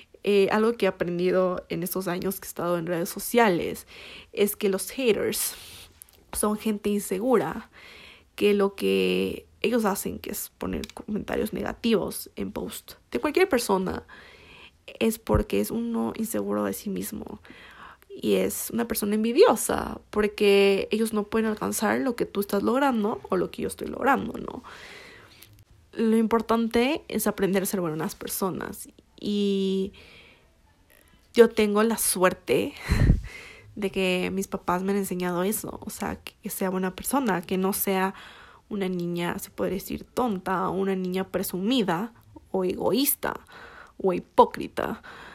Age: 20-39